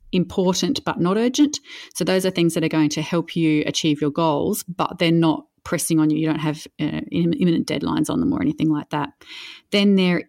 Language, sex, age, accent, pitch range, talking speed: English, female, 30-49, Australian, 160-200 Hz, 215 wpm